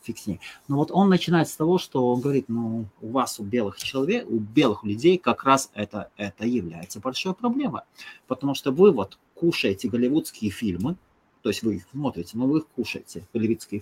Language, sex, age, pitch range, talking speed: English, male, 30-49, 110-165 Hz, 180 wpm